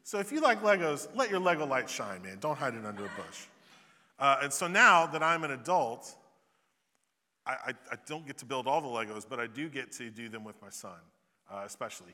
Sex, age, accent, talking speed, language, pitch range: male, 30-49, American, 230 wpm, English, 125-180 Hz